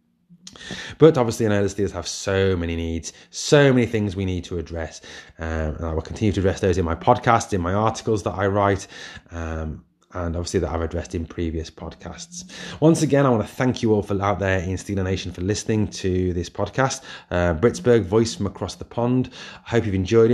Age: 20-39